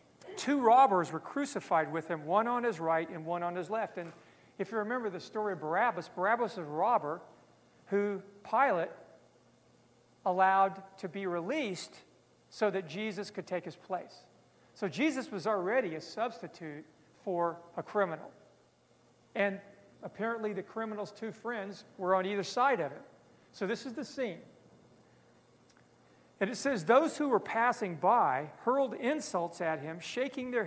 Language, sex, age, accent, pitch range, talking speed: English, male, 50-69, American, 175-235 Hz, 155 wpm